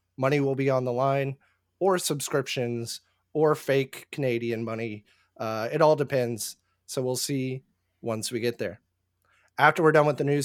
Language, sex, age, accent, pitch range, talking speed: English, male, 30-49, American, 110-145 Hz, 165 wpm